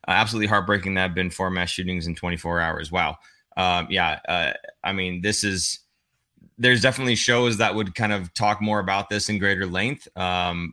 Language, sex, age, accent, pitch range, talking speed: English, male, 20-39, American, 90-115 Hz, 190 wpm